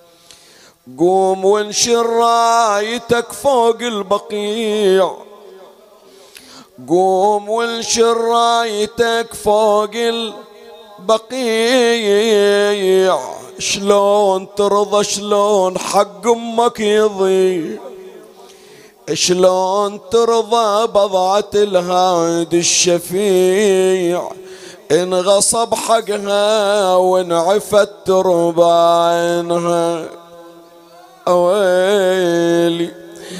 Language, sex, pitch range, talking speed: Arabic, male, 185-230 Hz, 45 wpm